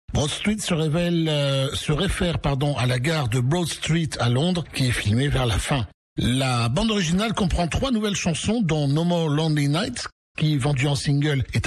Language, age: French, 60-79